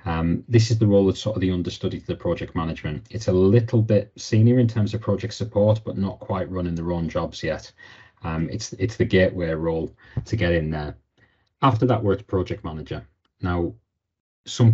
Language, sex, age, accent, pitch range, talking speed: English, male, 30-49, British, 85-110 Hz, 200 wpm